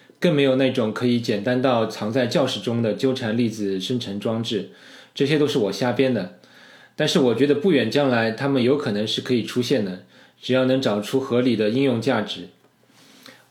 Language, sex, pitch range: Chinese, male, 110-140 Hz